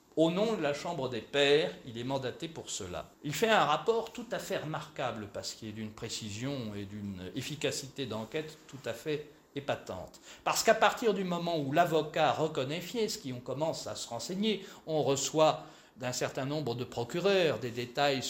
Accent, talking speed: French, 185 wpm